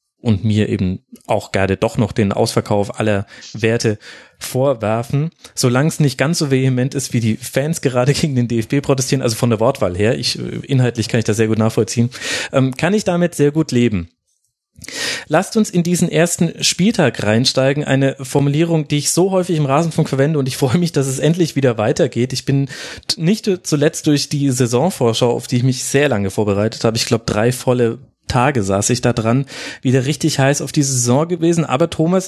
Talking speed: 190 wpm